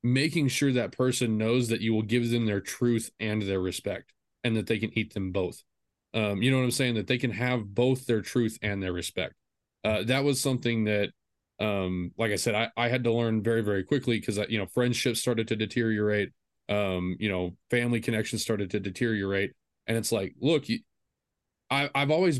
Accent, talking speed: American, 210 wpm